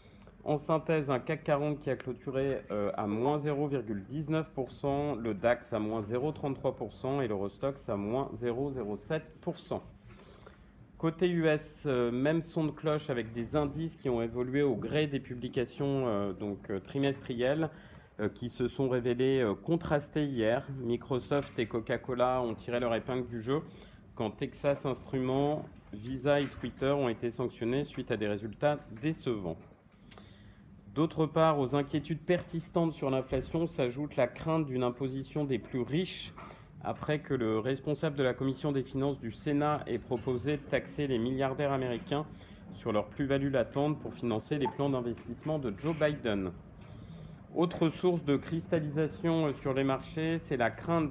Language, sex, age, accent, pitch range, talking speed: French, male, 40-59, French, 120-150 Hz, 145 wpm